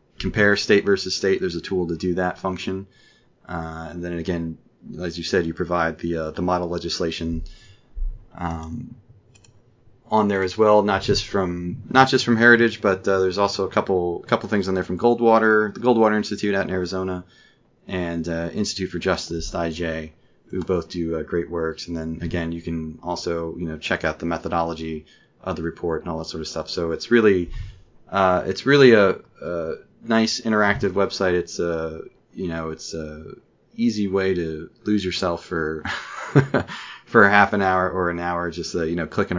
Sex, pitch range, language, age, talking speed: male, 80-100 Hz, English, 30-49, 190 wpm